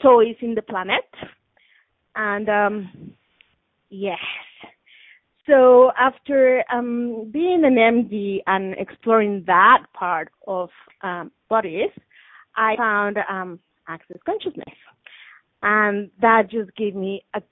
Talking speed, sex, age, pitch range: 105 wpm, female, 30-49, 195-230 Hz